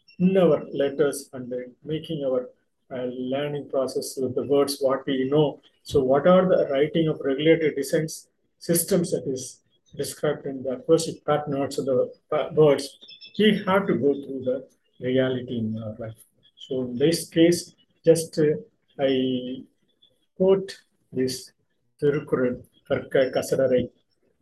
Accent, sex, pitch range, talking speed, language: native, male, 130-165 Hz, 145 wpm, Tamil